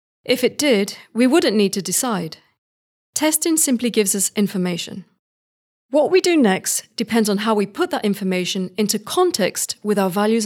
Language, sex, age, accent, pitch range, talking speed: English, female, 40-59, British, 190-260 Hz, 165 wpm